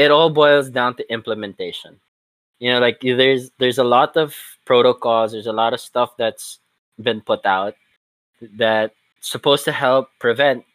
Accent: Filipino